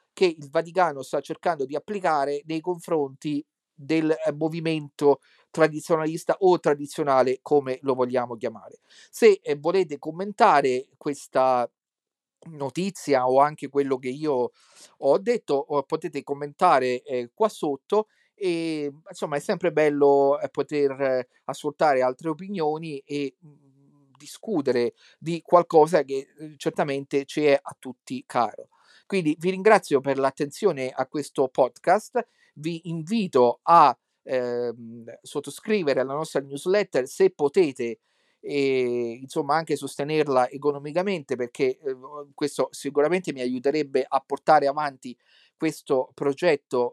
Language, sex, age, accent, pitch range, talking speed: Italian, male, 40-59, native, 135-170 Hz, 115 wpm